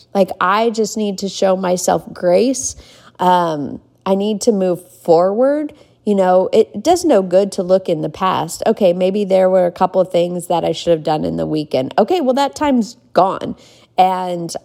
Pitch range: 180-220 Hz